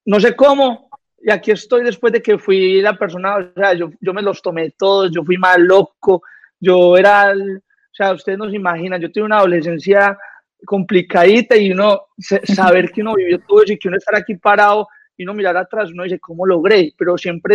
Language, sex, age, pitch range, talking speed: Spanish, male, 30-49, 175-205 Hz, 210 wpm